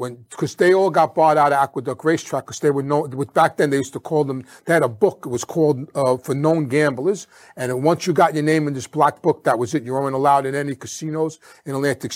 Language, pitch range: English, 135-160 Hz